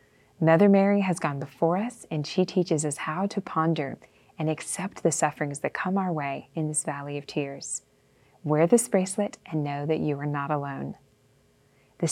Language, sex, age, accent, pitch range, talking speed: English, female, 20-39, American, 145-180 Hz, 185 wpm